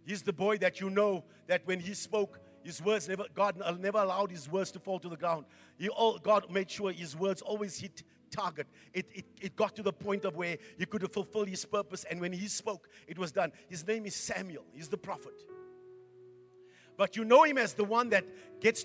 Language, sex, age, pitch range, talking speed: English, male, 50-69, 190-235 Hz, 225 wpm